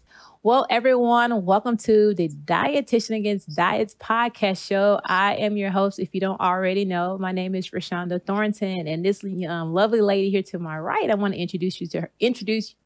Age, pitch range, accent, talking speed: 30-49, 165-200 Hz, American, 175 wpm